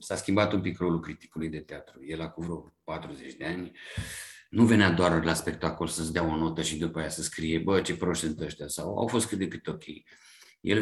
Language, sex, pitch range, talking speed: Romanian, male, 85-105 Hz, 220 wpm